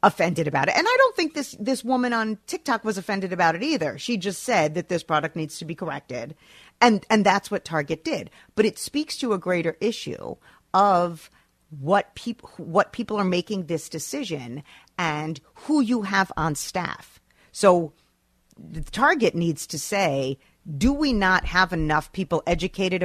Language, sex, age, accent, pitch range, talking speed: English, female, 40-59, American, 150-210 Hz, 175 wpm